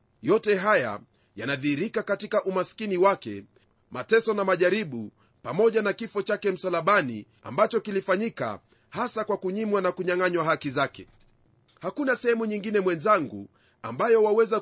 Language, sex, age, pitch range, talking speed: Swahili, male, 30-49, 155-220 Hz, 120 wpm